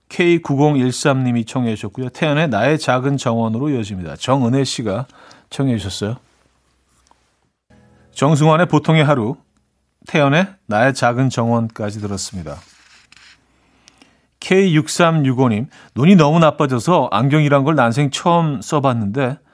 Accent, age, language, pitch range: native, 40-59, Korean, 115-155 Hz